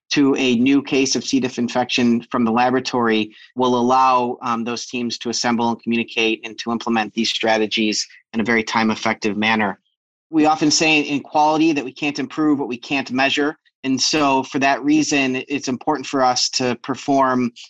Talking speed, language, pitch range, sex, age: 185 wpm, English, 120-140 Hz, male, 30-49